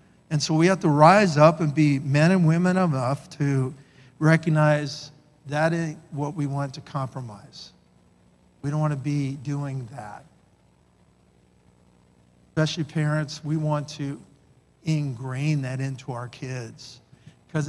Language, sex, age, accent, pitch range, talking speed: English, male, 50-69, American, 140-180 Hz, 135 wpm